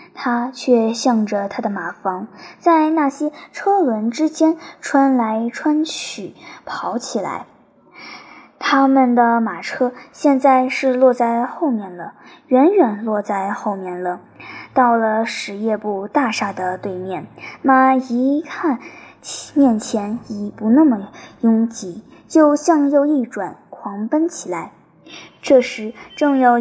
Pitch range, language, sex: 220-295 Hz, Chinese, male